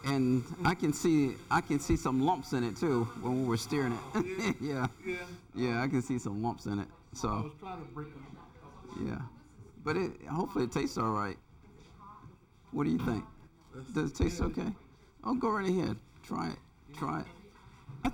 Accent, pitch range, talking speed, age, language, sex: American, 115-145 Hz, 175 wpm, 50-69, English, male